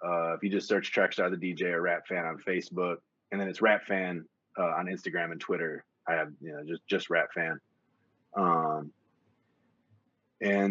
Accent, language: American, English